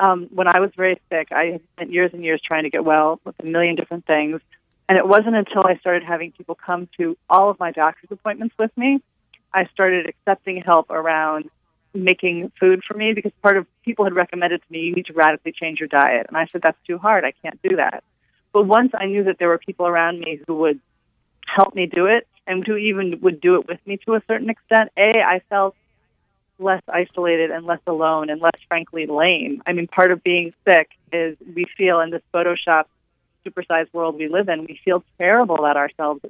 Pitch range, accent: 160-190 Hz, American